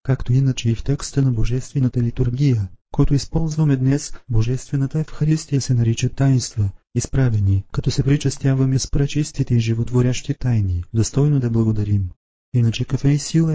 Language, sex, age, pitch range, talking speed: Bulgarian, male, 40-59, 115-140 Hz, 150 wpm